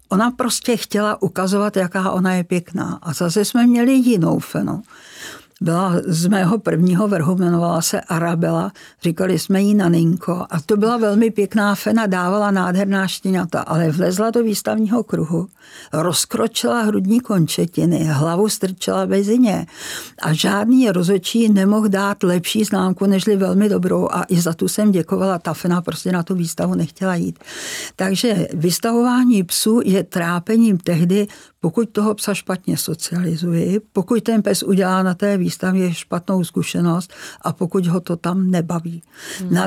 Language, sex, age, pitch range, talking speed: Czech, female, 60-79, 175-210 Hz, 145 wpm